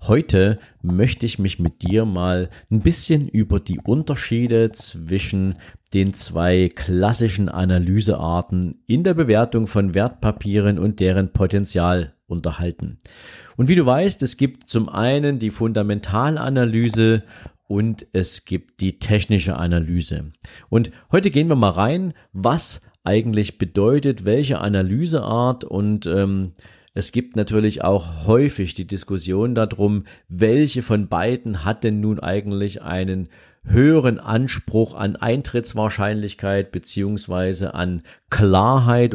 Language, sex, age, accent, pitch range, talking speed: German, male, 40-59, German, 90-115 Hz, 120 wpm